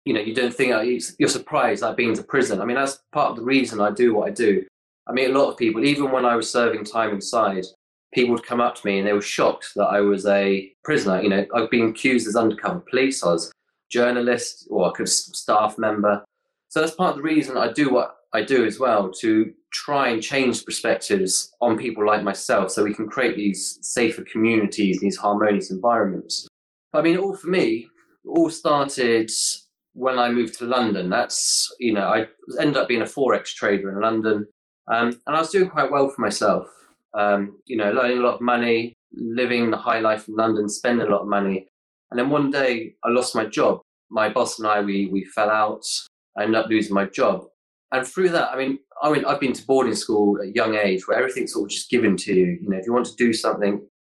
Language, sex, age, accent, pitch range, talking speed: English, male, 20-39, British, 105-130 Hz, 235 wpm